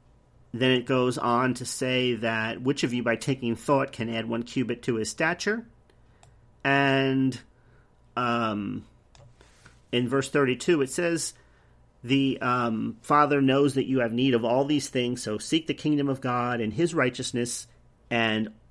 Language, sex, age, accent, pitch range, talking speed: English, male, 40-59, American, 120-145 Hz, 155 wpm